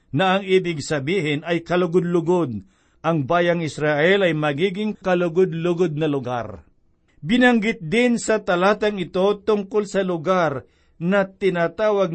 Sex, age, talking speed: male, 50-69, 120 wpm